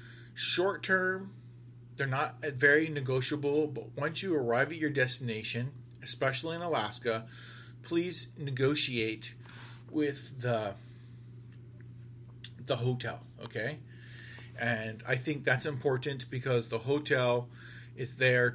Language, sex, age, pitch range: Chinese, male, 40-59, 120-140 Hz